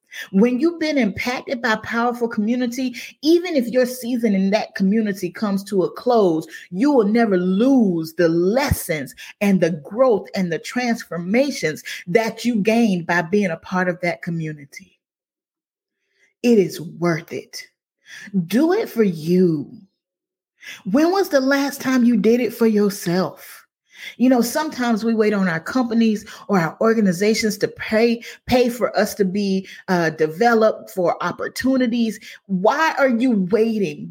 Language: English